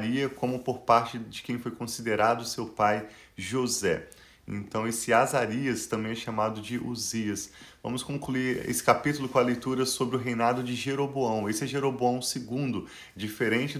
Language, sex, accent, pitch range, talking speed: Portuguese, male, Brazilian, 115-130 Hz, 150 wpm